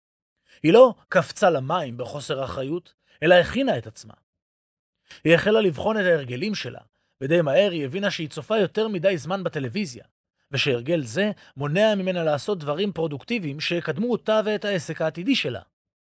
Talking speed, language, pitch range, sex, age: 145 wpm, Hebrew, 145-195 Hz, male, 30-49